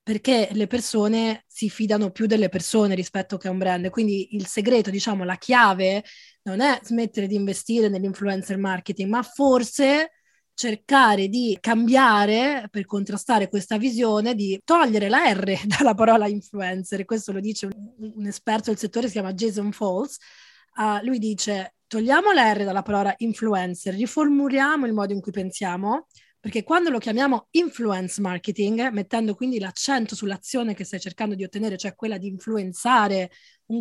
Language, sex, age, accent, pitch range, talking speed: Italian, female, 20-39, native, 195-245 Hz, 160 wpm